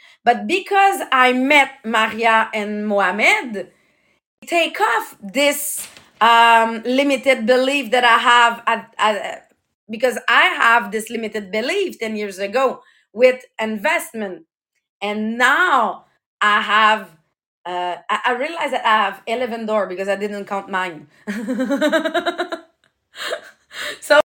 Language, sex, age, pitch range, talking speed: English, female, 30-49, 215-275 Hz, 120 wpm